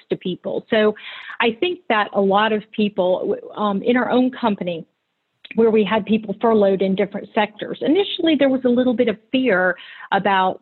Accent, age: American, 40-59